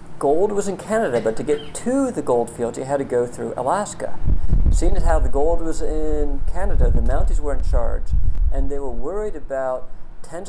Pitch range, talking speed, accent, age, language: 110-160 Hz, 205 wpm, American, 50-69, English